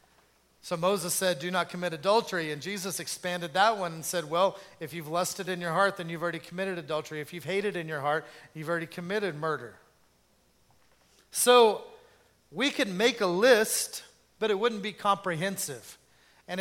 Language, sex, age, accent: English, male, 40-59, American